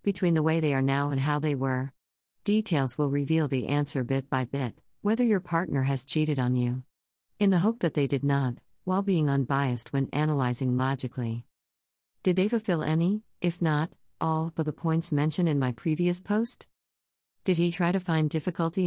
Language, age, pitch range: English, 50-69, 135-175 Hz